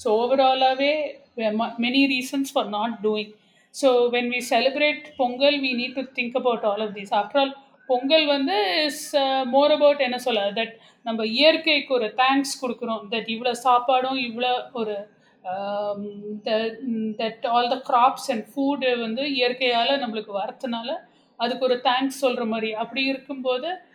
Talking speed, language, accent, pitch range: 145 wpm, Tamil, native, 225-275 Hz